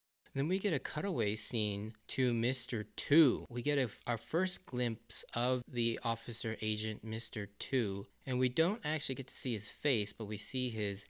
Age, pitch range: 20-39, 110-135 Hz